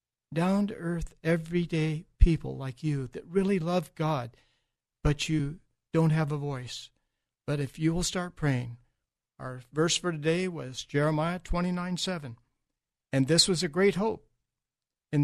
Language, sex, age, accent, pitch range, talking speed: English, male, 60-79, American, 135-175 Hz, 145 wpm